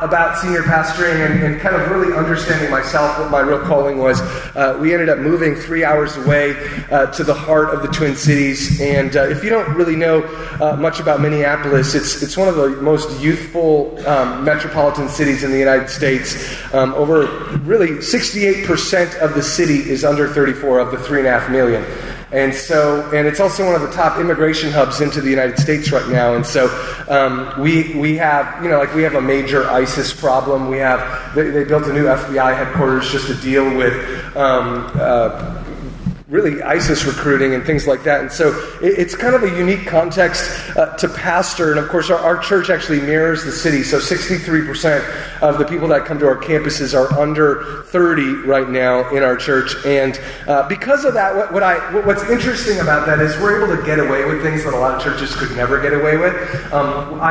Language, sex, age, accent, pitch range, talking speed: English, male, 30-49, American, 135-160 Hz, 205 wpm